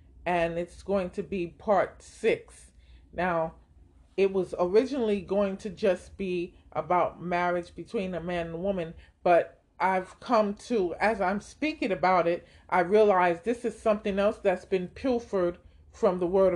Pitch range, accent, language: 170-200 Hz, American, English